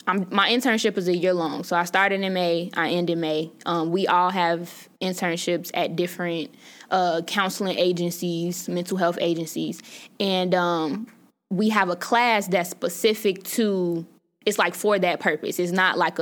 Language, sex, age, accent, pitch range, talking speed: English, female, 10-29, American, 175-200 Hz, 170 wpm